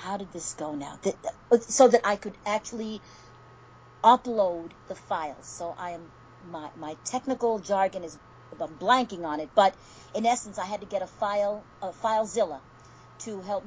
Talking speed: 175 wpm